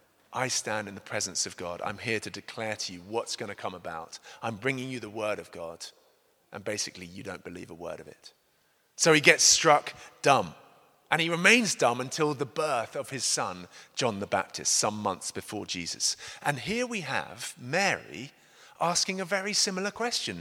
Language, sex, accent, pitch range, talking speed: English, male, British, 115-180 Hz, 195 wpm